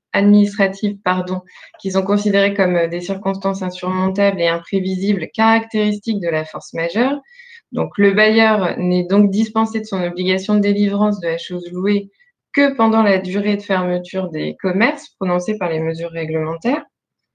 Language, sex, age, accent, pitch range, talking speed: French, female, 20-39, French, 180-220 Hz, 150 wpm